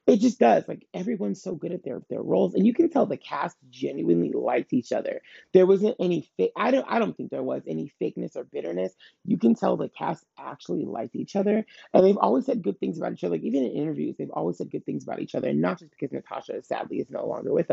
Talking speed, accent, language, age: 255 wpm, American, English, 30-49